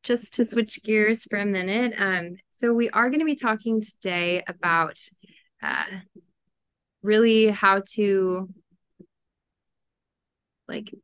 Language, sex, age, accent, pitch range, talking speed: English, female, 20-39, American, 175-210 Hz, 115 wpm